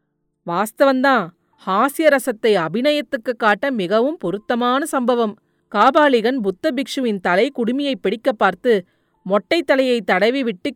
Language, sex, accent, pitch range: Tamil, female, native, 200-260 Hz